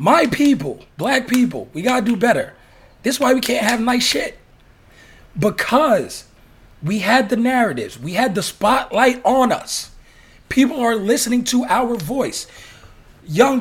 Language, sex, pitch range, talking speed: English, male, 215-255 Hz, 150 wpm